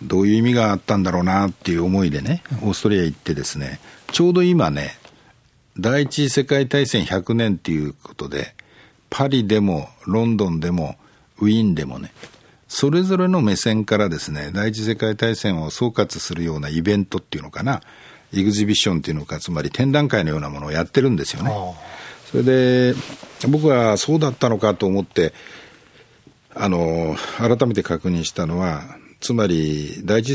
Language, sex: Japanese, male